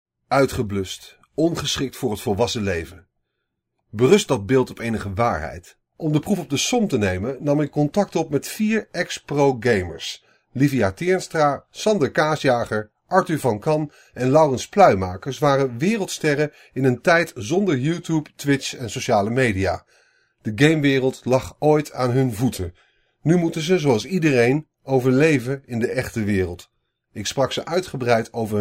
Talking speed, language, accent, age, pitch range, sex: 150 wpm, Dutch, Dutch, 40-59, 110-150 Hz, male